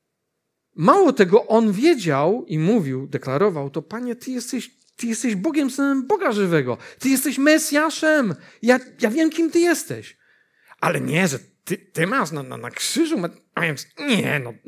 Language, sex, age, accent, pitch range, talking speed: Polish, male, 50-69, native, 170-280 Hz, 155 wpm